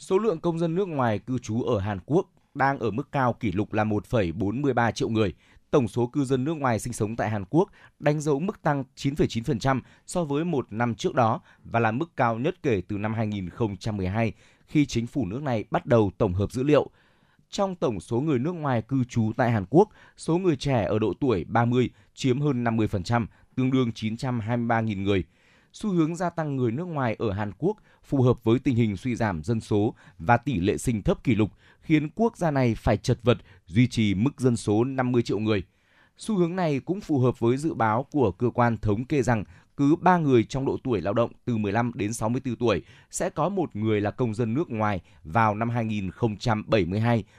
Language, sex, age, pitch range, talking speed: Vietnamese, male, 20-39, 110-140 Hz, 215 wpm